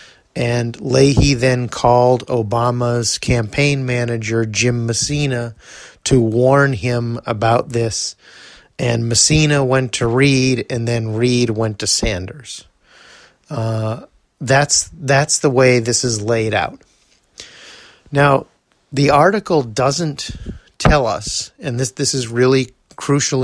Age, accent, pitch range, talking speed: 30-49, American, 115-140 Hz, 120 wpm